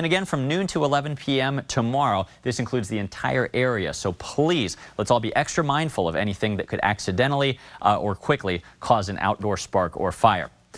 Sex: male